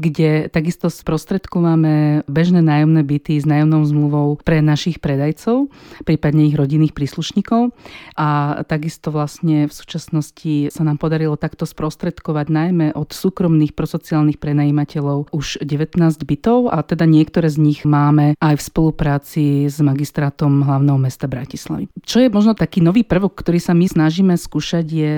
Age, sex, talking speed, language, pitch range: 40-59, female, 145 wpm, Slovak, 155-175 Hz